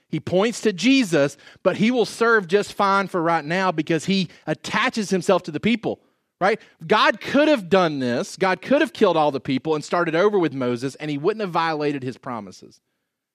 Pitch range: 145-200 Hz